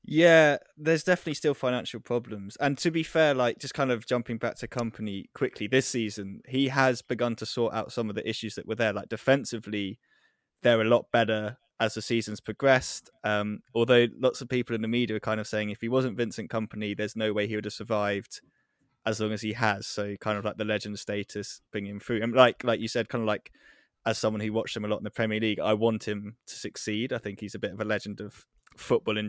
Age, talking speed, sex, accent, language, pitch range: 20-39, 240 wpm, male, British, English, 105-120 Hz